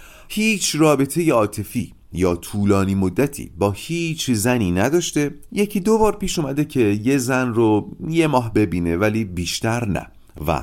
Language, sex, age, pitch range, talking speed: Persian, male, 30-49, 90-150 Hz, 150 wpm